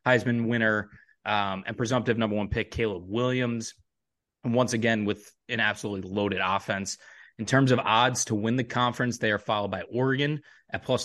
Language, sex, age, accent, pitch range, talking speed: English, male, 20-39, American, 105-125 Hz, 180 wpm